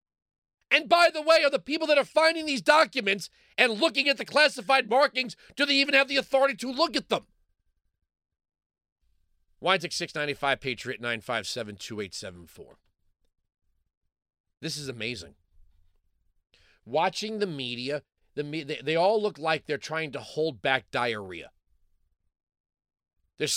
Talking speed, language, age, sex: 130 wpm, English, 40-59, male